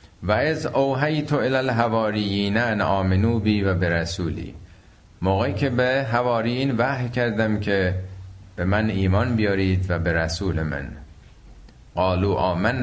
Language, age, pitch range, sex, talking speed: Persian, 50-69, 90-120 Hz, male, 115 wpm